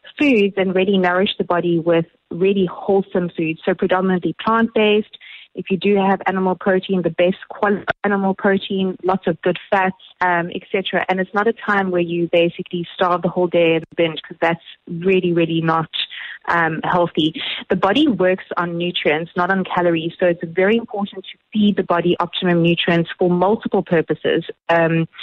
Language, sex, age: English, female, 20-39